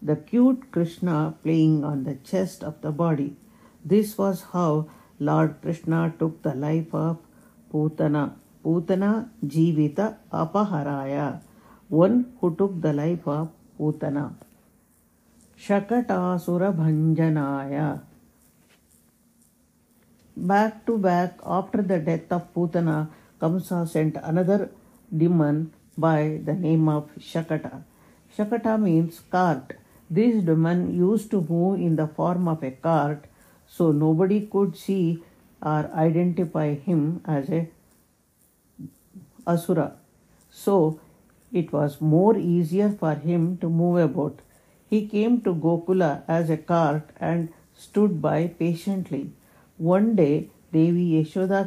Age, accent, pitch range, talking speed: 50-69, Indian, 155-185 Hz, 115 wpm